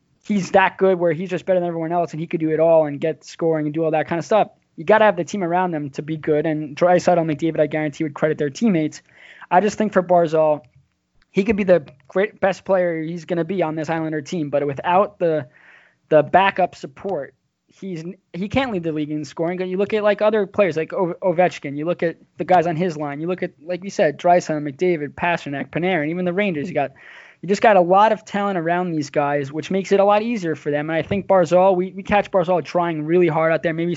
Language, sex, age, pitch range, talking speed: English, male, 20-39, 155-190 Hz, 250 wpm